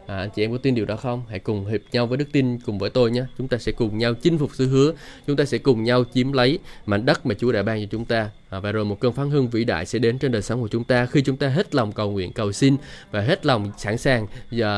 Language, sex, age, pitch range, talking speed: Vietnamese, male, 20-39, 110-145 Hz, 315 wpm